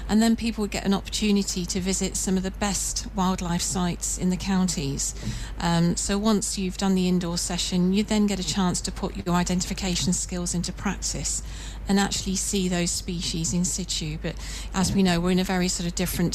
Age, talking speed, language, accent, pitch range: 40-59, 205 wpm, English, British, 175-200 Hz